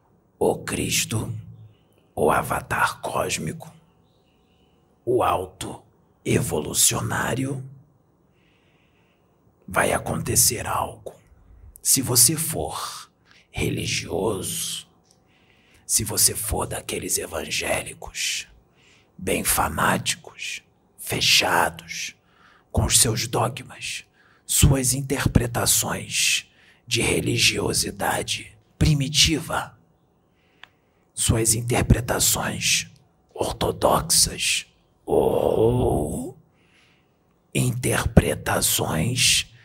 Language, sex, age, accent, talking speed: Portuguese, male, 50-69, Brazilian, 55 wpm